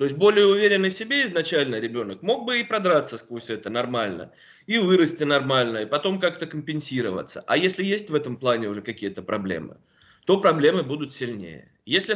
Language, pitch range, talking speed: Russian, 125-185 Hz, 180 wpm